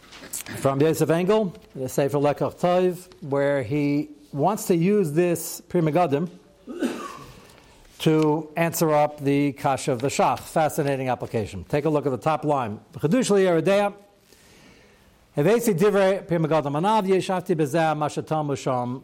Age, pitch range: 60-79, 130-185 Hz